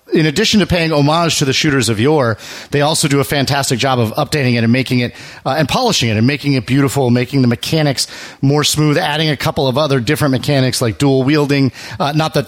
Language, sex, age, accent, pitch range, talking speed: English, male, 40-59, American, 120-150 Hz, 230 wpm